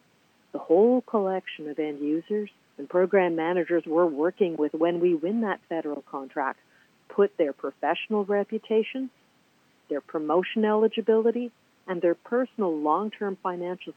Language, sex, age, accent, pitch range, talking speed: English, female, 50-69, American, 165-225 Hz, 130 wpm